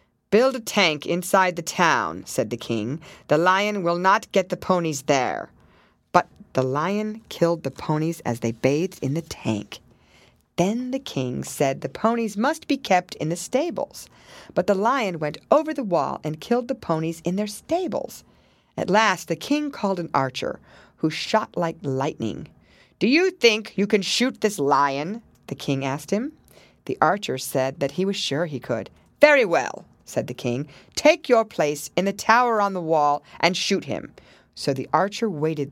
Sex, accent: female, American